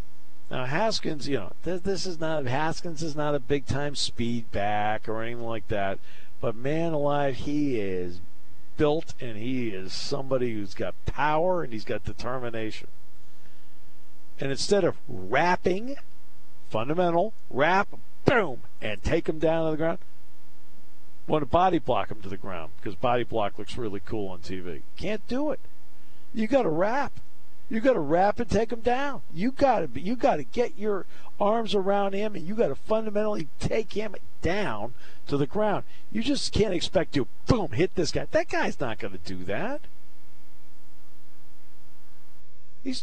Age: 50-69